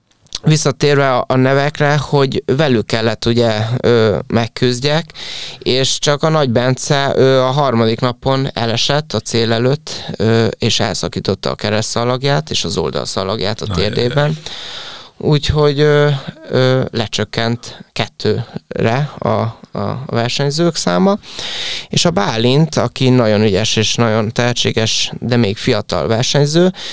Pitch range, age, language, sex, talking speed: 115-145 Hz, 20-39, Hungarian, male, 110 wpm